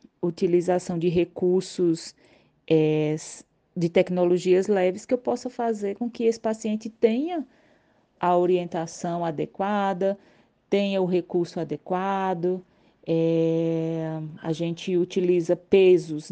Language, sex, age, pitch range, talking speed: Portuguese, female, 30-49, 165-185 Hz, 105 wpm